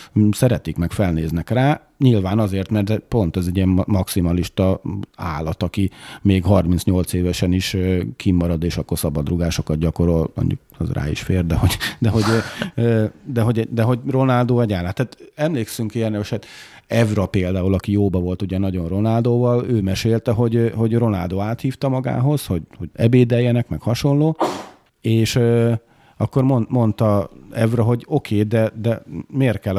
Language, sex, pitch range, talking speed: Hungarian, male, 90-115 Hz, 145 wpm